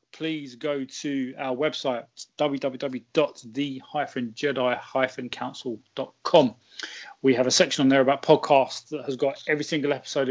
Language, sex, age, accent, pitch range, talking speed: English, male, 30-49, British, 130-150 Hz, 115 wpm